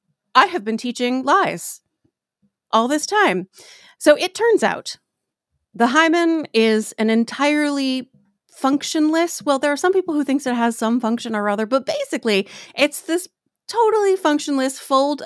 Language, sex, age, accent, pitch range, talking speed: English, female, 30-49, American, 205-290 Hz, 150 wpm